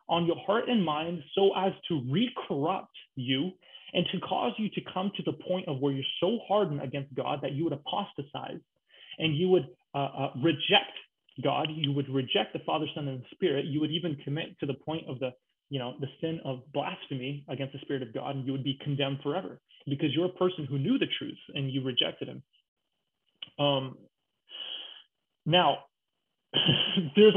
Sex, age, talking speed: male, 30-49, 190 wpm